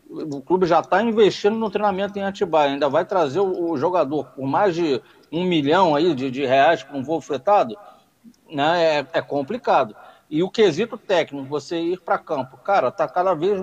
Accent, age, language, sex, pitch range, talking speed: Brazilian, 50-69, Portuguese, male, 155-215 Hz, 185 wpm